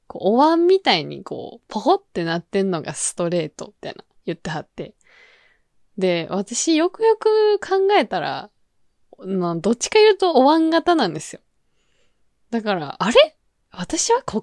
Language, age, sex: Japanese, 20-39, female